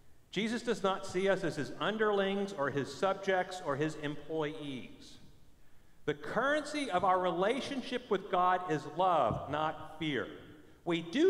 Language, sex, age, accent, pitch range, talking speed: English, male, 50-69, American, 160-210 Hz, 145 wpm